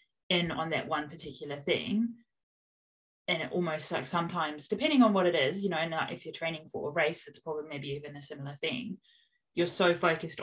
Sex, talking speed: female, 205 wpm